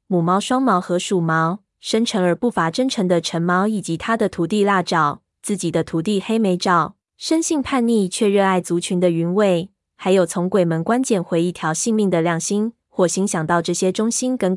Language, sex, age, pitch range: Chinese, female, 20-39, 175-220 Hz